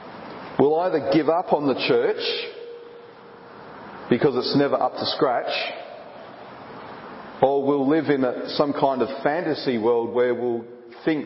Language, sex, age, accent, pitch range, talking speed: English, male, 40-59, Australian, 130-210 Hz, 130 wpm